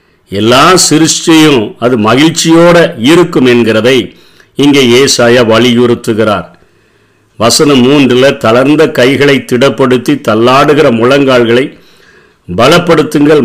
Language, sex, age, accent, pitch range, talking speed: Tamil, male, 50-69, native, 120-150 Hz, 75 wpm